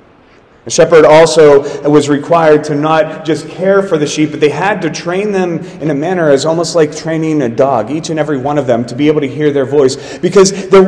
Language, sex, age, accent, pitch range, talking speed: English, male, 30-49, American, 145-185 Hz, 230 wpm